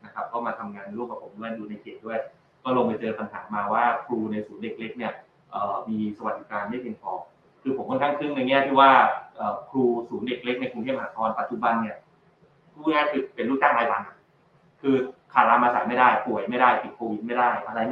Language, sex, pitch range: Thai, male, 115-135 Hz